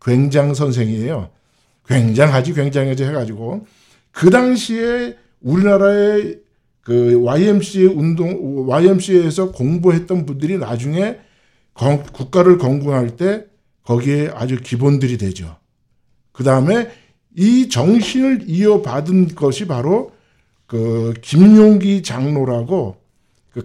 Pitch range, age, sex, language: 130-195 Hz, 50-69, male, Korean